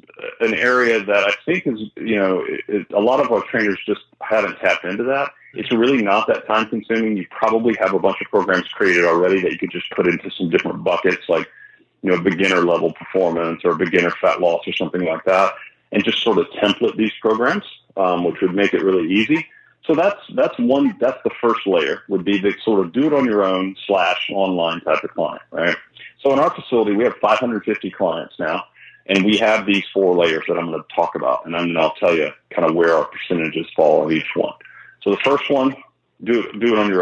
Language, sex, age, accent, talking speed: English, male, 40-59, American, 225 wpm